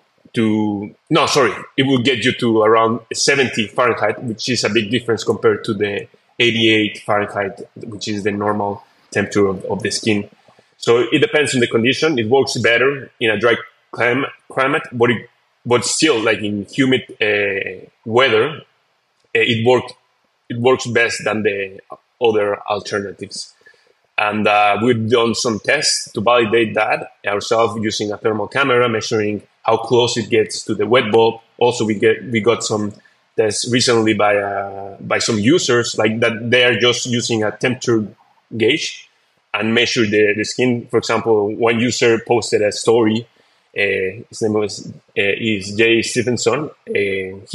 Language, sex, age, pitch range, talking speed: English, male, 20-39, 105-125 Hz, 160 wpm